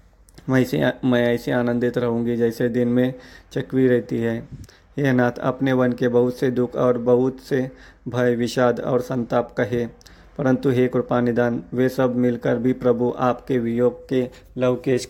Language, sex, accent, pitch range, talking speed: Hindi, male, native, 120-130 Hz, 155 wpm